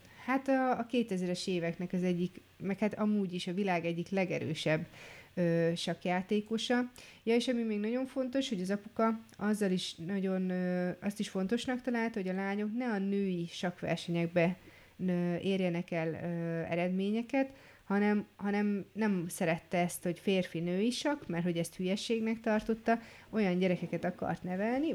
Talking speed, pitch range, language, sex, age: 135 wpm, 170-205 Hz, Hungarian, female, 30-49